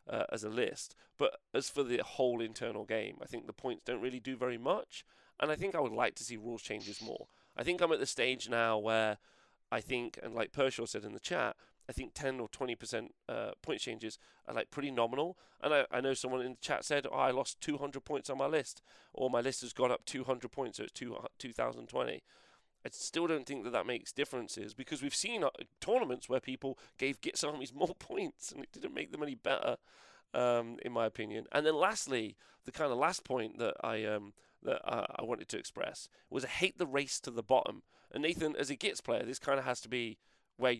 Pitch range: 115-135 Hz